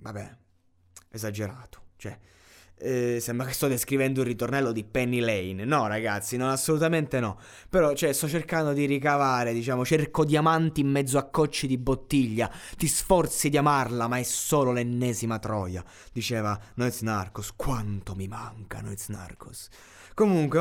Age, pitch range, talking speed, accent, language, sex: 20-39, 110-145 Hz, 150 wpm, native, Italian, male